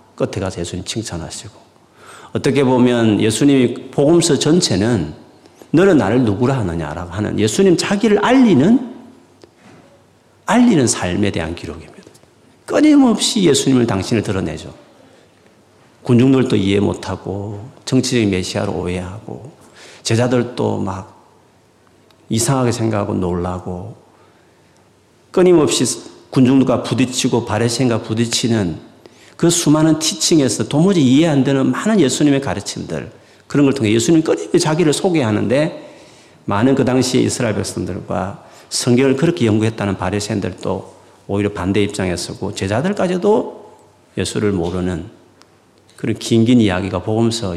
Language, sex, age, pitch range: Korean, male, 40-59, 95-135 Hz